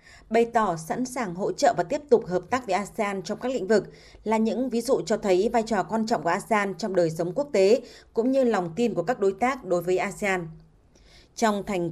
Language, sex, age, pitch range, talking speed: Vietnamese, female, 20-39, 185-235 Hz, 235 wpm